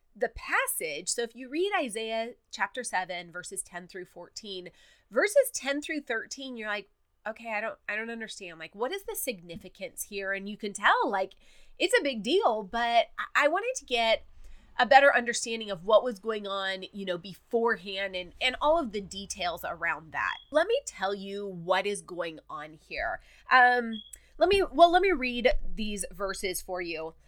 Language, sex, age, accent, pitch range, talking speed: English, female, 30-49, American, 185-255 Hz, 185 wpm